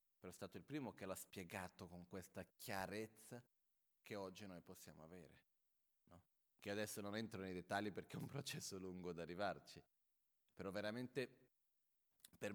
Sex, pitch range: male, 90-105 Hz